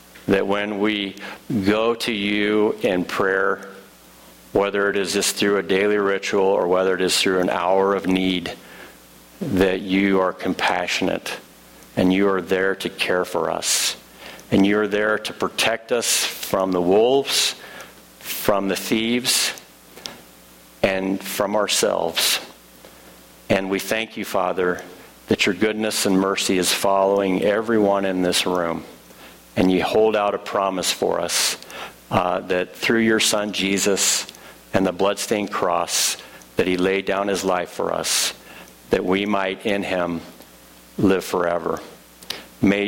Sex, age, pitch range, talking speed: male, 50-69, 90-105 Hz, 145 wpm